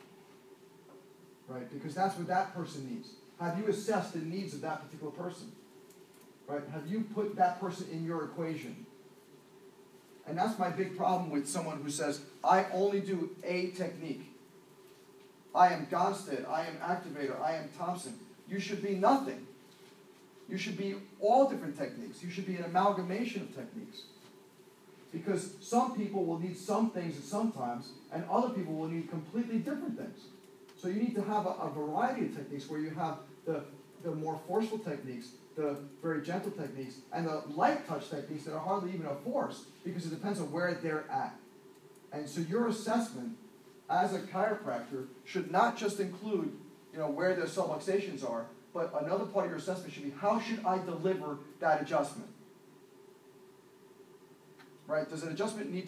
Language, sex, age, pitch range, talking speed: English, male, 40-59, 155-200 Hz, 170 wpm